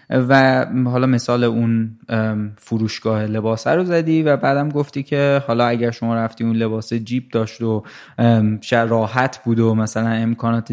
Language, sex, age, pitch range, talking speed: Persian, male, 20-39, 115-140 Hz, 145 wpm